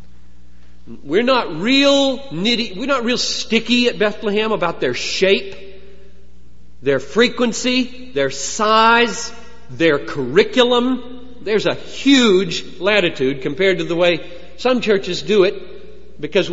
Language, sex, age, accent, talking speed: English, male, 40-59, American, 115 wpm